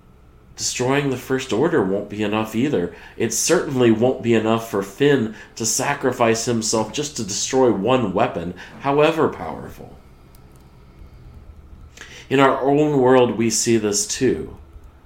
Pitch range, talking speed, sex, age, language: 80-115 Hz, 130 wpm, male, 40-59, English